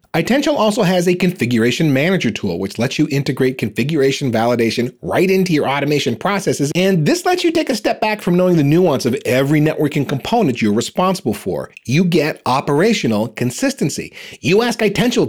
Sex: male